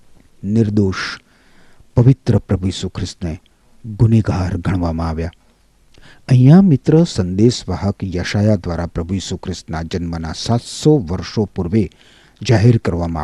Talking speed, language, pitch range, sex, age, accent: 90 wpm, Gujarati, 85-120 Hz, male, 50-69, native